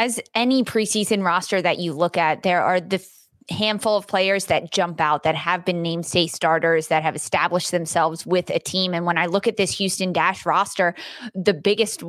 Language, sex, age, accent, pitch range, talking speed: English, female, 20-39, American, 170-200 Hz, 205 wpm